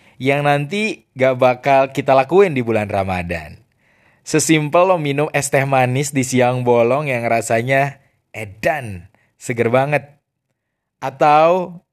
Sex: male